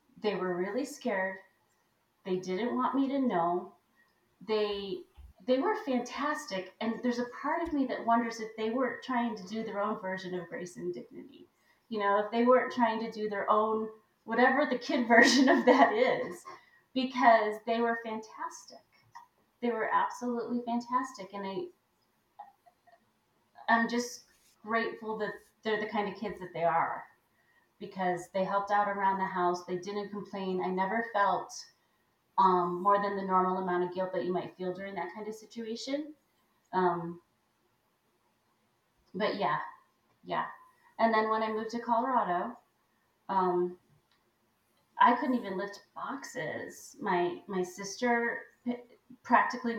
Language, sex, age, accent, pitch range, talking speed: English, female, 30-49, American, 190-240 Hz, 150 wpm